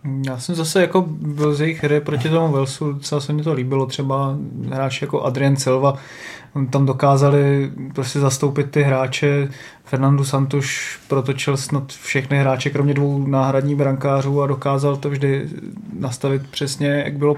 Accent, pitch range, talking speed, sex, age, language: native, 140-150 Hz, 155 wpm, male, 20-39, Czech